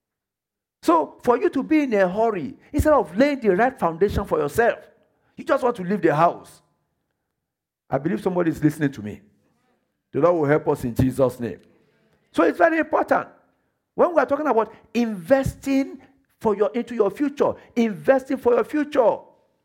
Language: English